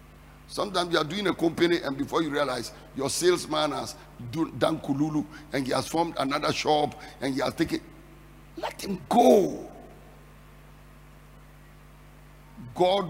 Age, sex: 60-79, male